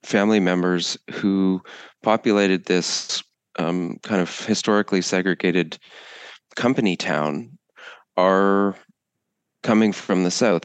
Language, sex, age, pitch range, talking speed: English, male, 30-49, 85-100 Hz, 95 wpm